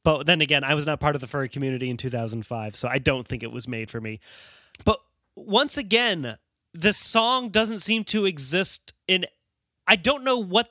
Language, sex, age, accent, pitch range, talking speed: English, male, 30-49, American, 145-210 Hz, 200 wpm